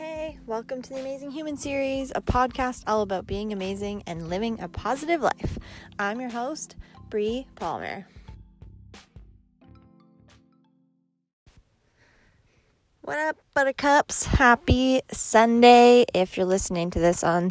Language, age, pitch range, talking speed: English, 20-39, 175-265 Hz, 115 wpm